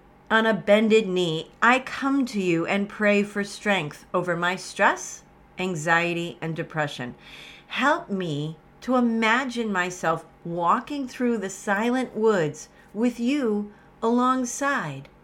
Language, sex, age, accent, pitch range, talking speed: English, female, 40-59, American, 180-270 Hz, 120 wpm